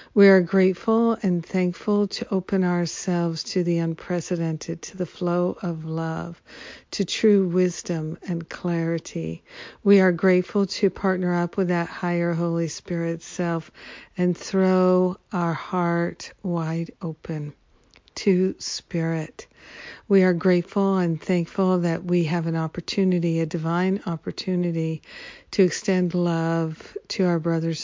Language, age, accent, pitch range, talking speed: English, 60-79, American, 165-185 Hz, 130 wpm